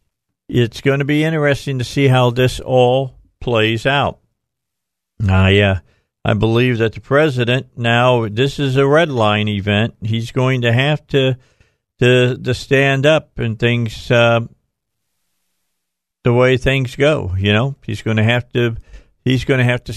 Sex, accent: male, American